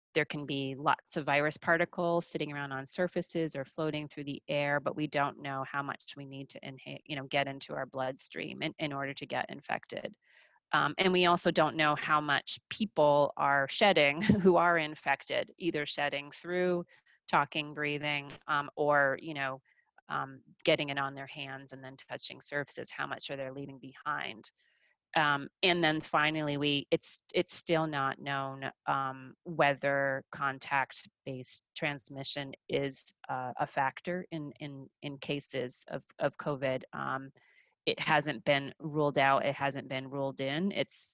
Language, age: English, 30-49